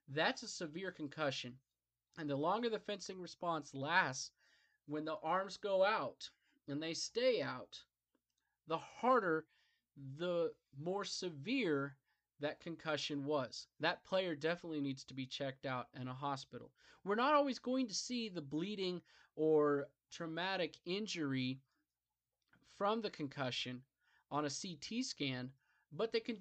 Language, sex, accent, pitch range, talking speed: English, male, American, 140-195 Hz, 135 wpm